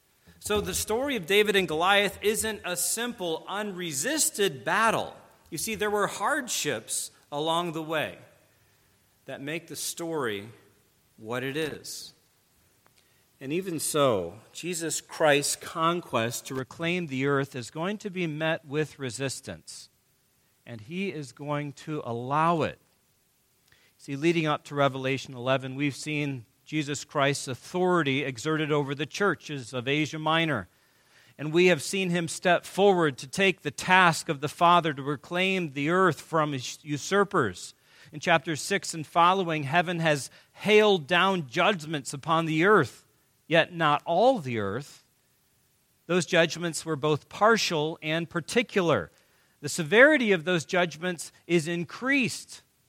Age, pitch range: 40-59, 135-180 Hz